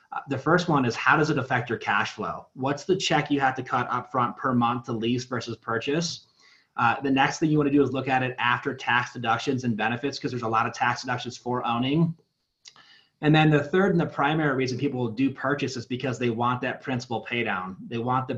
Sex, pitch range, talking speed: male, 115-135 Hz, 240 wpm